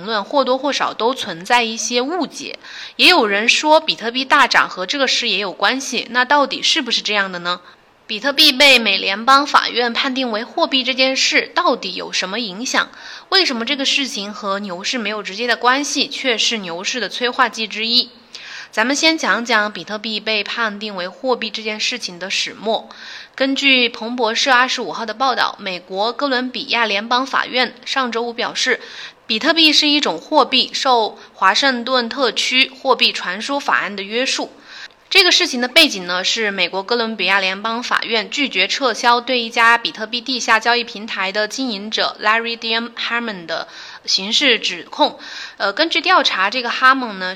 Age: 20-39